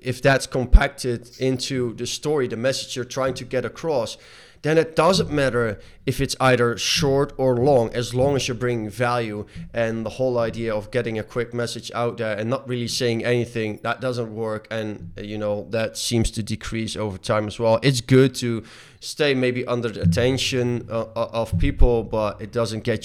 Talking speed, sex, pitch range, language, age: 195 wpm, male, 105-125 Hz, English, 20-39